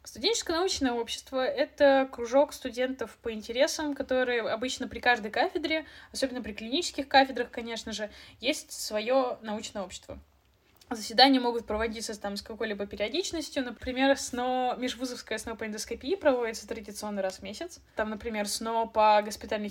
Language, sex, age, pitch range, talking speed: Russian, female, 10-29, 220-275 Hz, 140 wpm